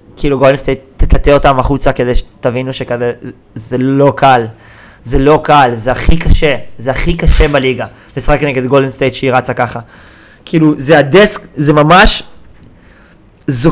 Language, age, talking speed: Hebrew, 20-39, 155 wpm